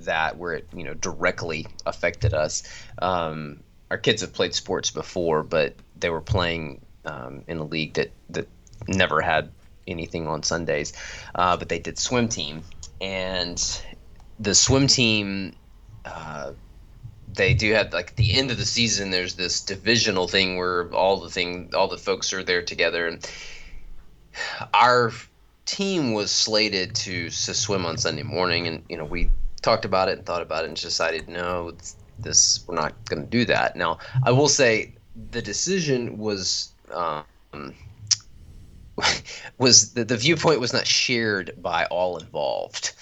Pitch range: 85-115 Hz